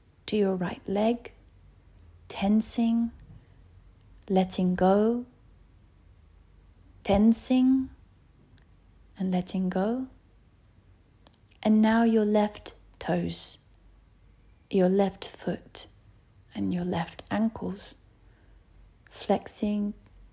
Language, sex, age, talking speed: English, female, 30-49, 70 wpm